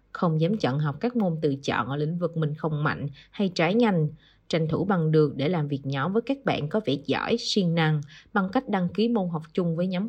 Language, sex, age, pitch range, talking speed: Vietnamese, female, 20-39, 155-190 Hz, 250 wpm